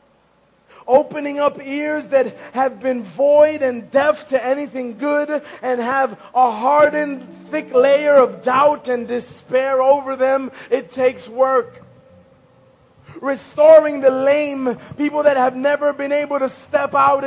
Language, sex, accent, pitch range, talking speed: English, male, American, 255-290 Hz, 135 wpm